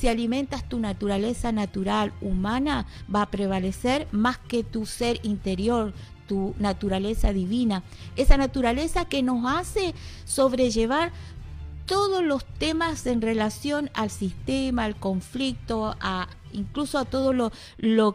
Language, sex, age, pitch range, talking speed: Spanish, female, 50-69, 200-270 Hz, 125 wpm